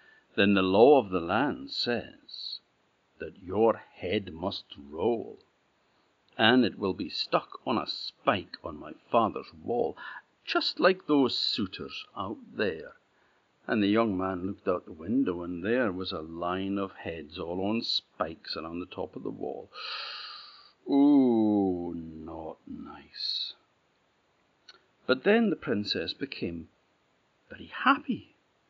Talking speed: 135 wpm